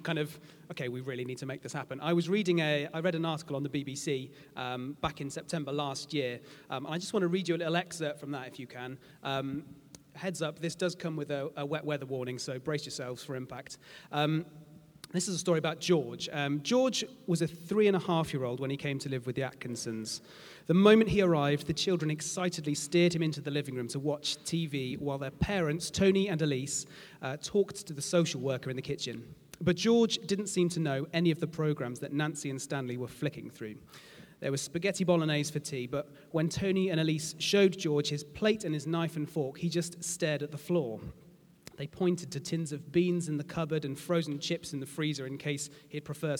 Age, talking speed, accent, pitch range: 30-49, 230 wpm, British, 140-170 Hz